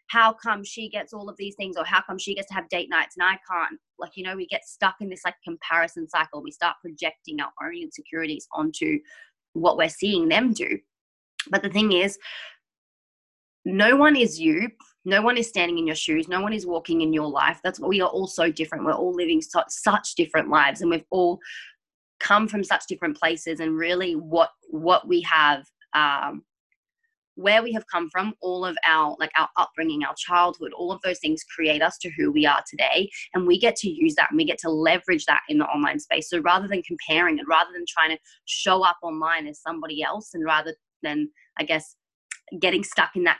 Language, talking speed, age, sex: English, 220 wpm, 20-39, female